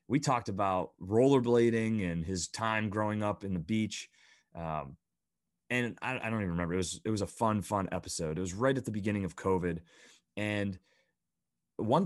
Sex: male